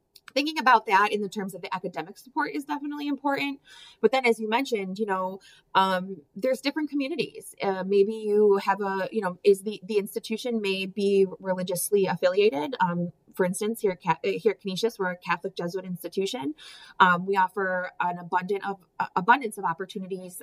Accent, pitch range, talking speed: American, 185-220 Hz, 175 wpm